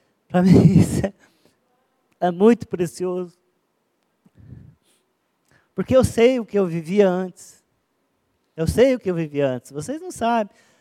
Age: 20-39